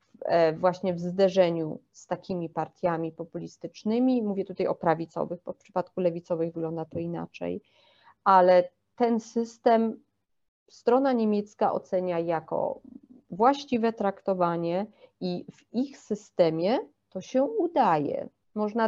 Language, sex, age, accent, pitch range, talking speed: English, female, 30-49, Polish, 180-230 Hz, 110 wpm